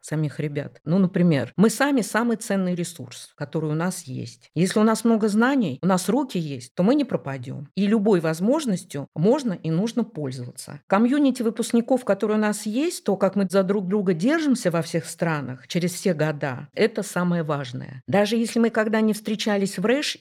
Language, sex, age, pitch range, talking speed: Russian, female, 50-69, 150-205 Hz, 185 wpm